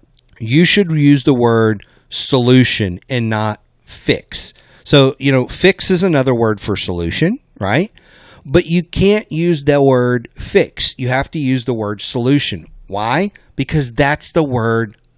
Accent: American